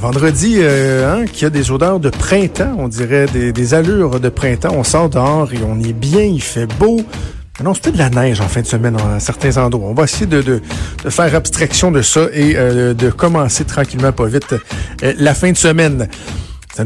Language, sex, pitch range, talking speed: French, male, 125-155 Hz, 230 wpm